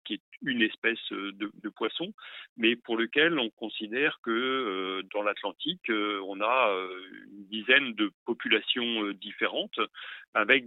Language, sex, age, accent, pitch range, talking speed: French, male, 40-59, French, 100-115 Hz, 150 wpm